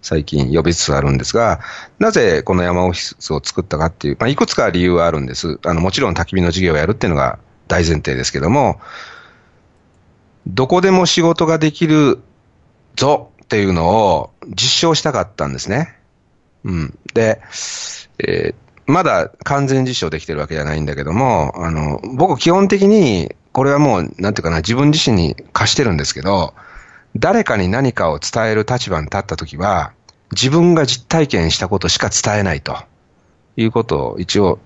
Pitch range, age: 85-125 Hz, 40-59